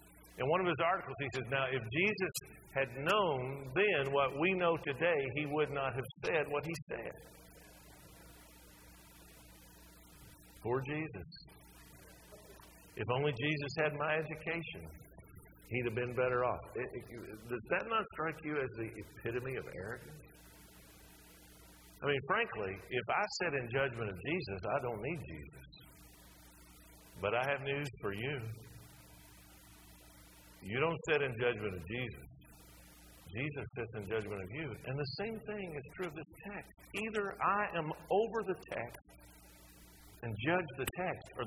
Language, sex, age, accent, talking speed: English, male, 50-69, American, 145 wpm